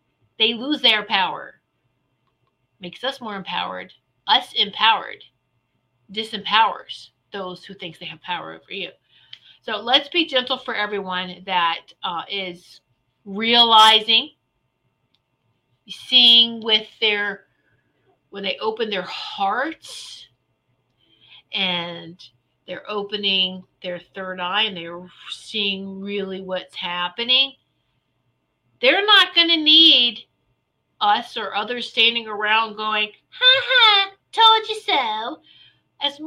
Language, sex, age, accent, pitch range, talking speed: English, female, 40-59, American, 185-255 Hz, 110 wpm